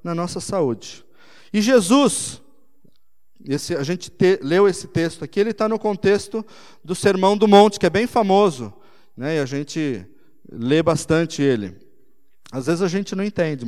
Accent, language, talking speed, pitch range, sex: Brazilian, Portuguese, 160 wpm, 160-240 Hz, male